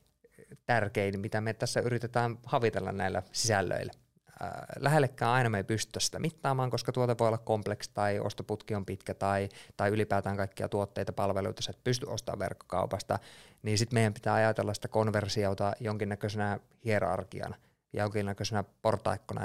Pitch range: 100-115 Hz